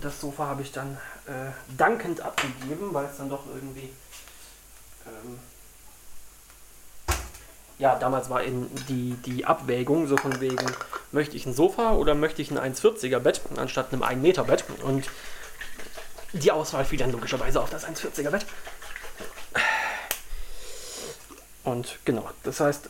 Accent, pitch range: German, 130-150 Hz